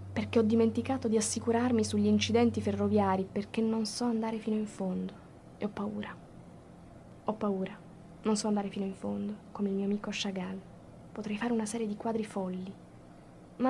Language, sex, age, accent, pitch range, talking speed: Italian, female, 20-39, native, 200-230 Hz, 170 wpm